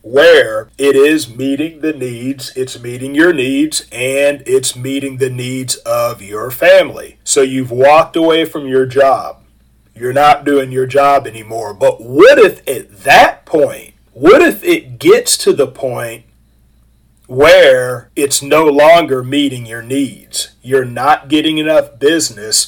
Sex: male